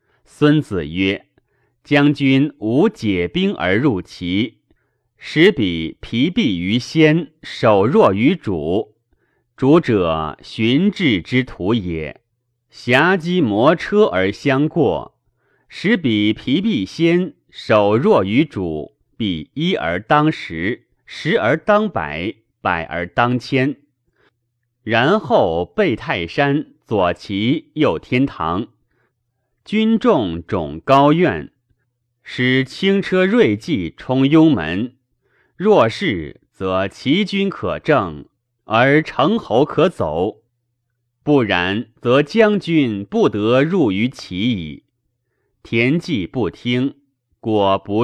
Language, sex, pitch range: Chinese, male, 110-150 Hz